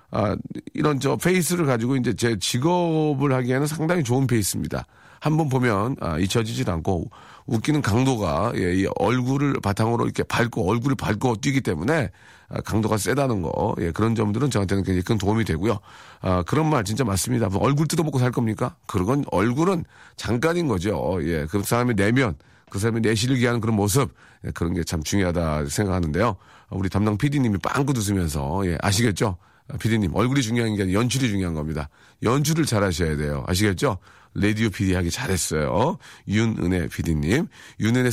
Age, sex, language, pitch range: 40-59, male, Korean, 95-135 Hz